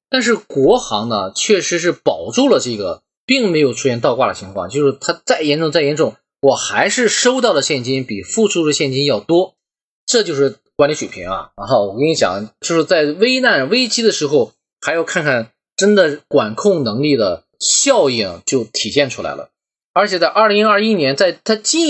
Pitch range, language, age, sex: 140-215 Hz, Chinese, 20-39, male